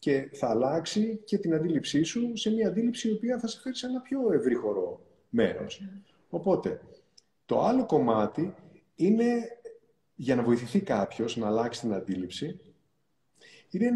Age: 30-49